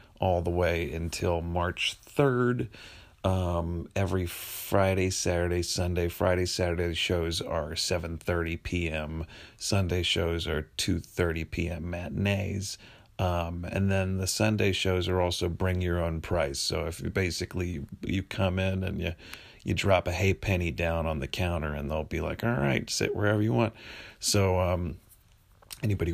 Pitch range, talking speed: 85-100 Hz, 165 wpm